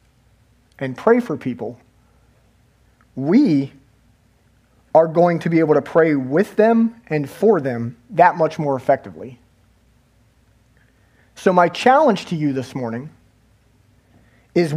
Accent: American